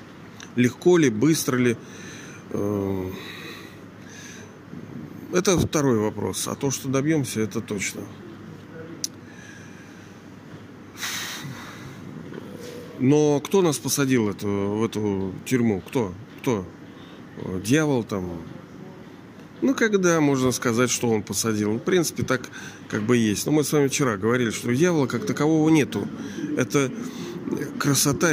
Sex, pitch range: male, 115-150 Hz